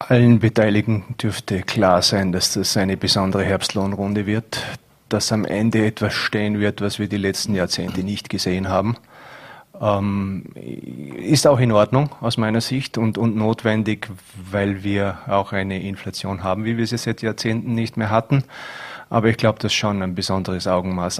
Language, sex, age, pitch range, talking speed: German, male, 30-49, 95-110 Hz, 165 wpm